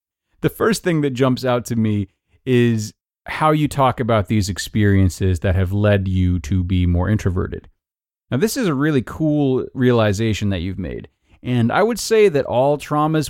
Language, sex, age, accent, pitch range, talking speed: English, male, 30-49, American, 100-140 Hz, 180 wpm